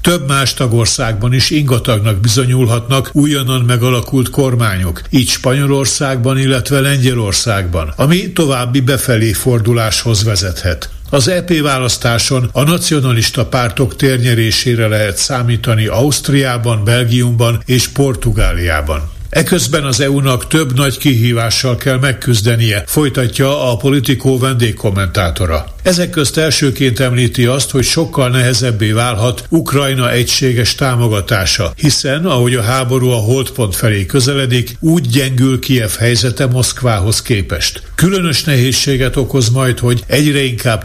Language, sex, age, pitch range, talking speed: Hungarian, male, 60-79, 115-135 Hz, 110 wpm